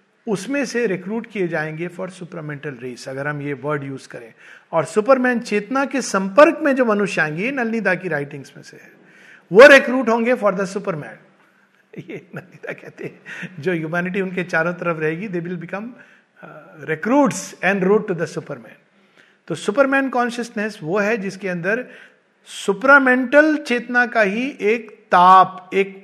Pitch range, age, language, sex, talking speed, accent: 155-215 Hz, 50-69, Hindi, male, 90 wpm, native